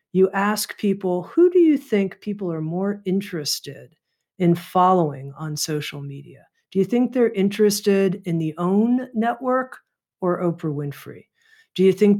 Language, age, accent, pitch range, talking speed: English, 50-69, American, 165-205 Hz, 150 wpm